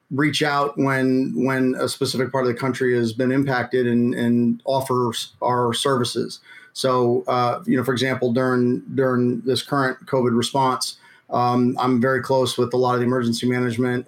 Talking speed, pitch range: 175 wpm, 125-140 Hz